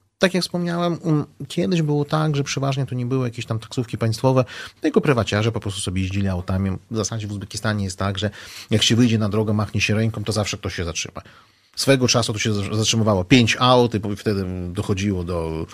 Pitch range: 95-135 Hz